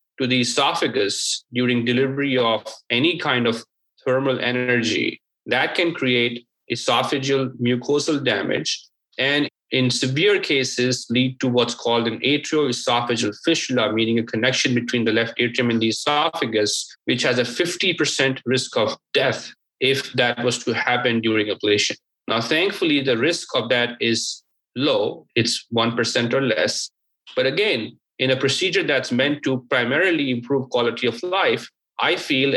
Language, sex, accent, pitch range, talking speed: English, male, Indian, 120-145 Hz, 145 wpm